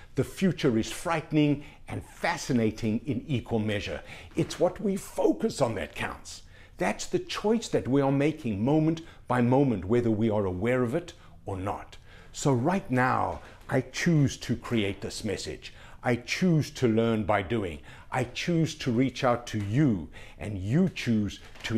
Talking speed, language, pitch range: 165 wpm, English, 105-140 Hz